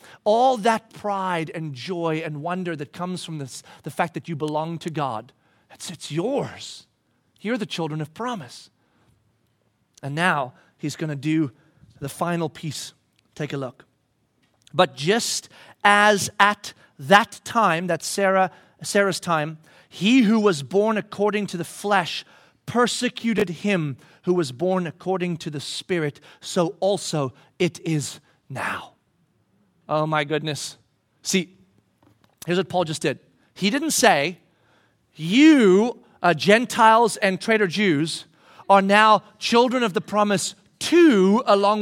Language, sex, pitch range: English, male, 150-200 Hz